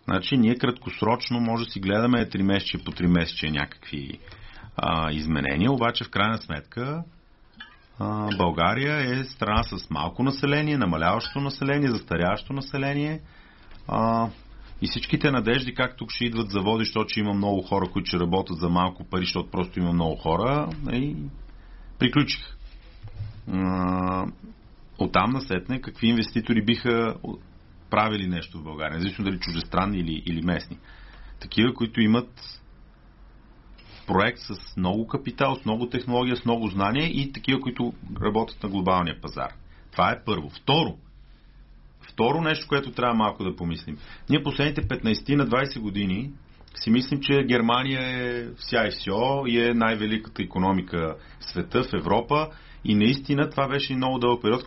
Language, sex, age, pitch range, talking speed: Bulgarian, male, 40-59, 90-125 Hz, 145 wpm